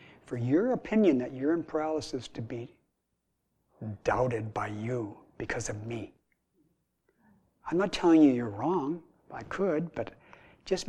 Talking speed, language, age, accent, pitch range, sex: 140 wpm, English, 60-79, American, 115-140 Hz, male